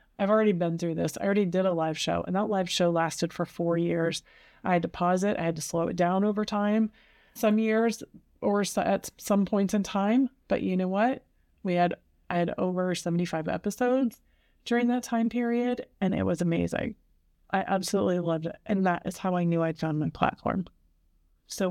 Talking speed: 205 wpm